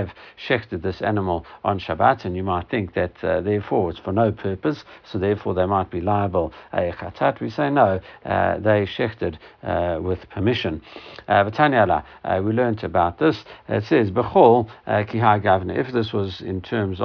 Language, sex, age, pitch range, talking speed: English, male, 60-79, 90-110 Hz, 155 wpm